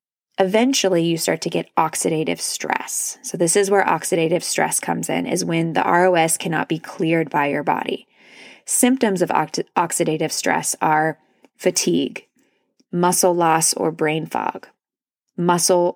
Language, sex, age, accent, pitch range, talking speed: English, female, 20-39, American, 165-190 Hz, 140 wpm